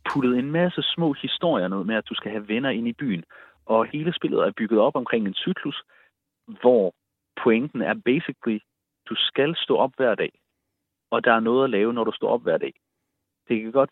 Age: 30-49